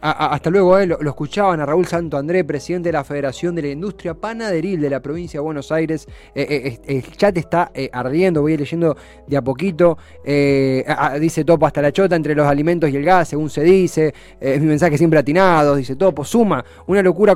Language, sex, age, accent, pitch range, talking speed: Spanish, male, 20-39, Argentinian, 150-195 Hz, 240 wpm